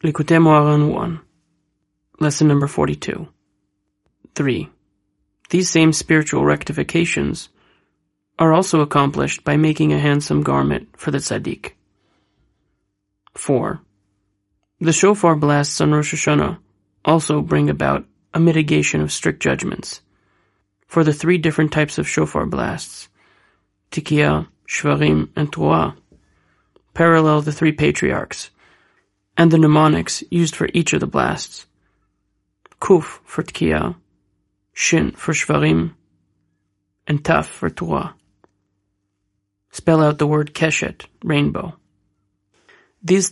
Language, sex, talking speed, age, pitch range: English, male, 110 wpm, 30-49, 100-165 Hz